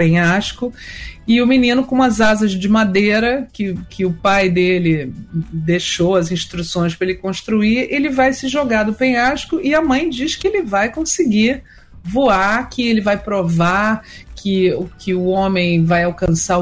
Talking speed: 165 wpm